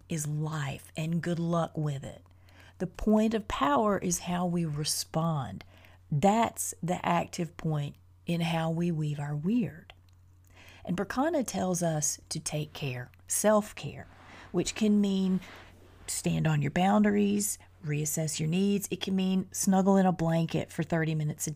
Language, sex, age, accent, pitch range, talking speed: English, female, 30-49, American, 150-185 Hz, 150 wpm